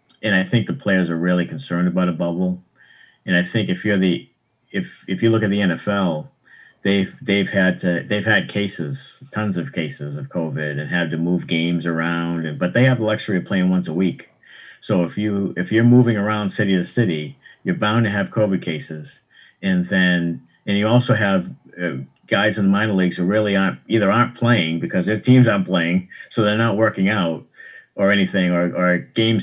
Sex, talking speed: male, 205 wpm